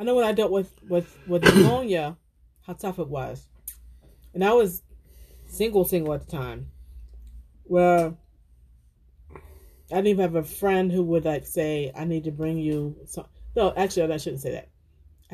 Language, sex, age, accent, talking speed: English, female, 40-59, American, 175 wpm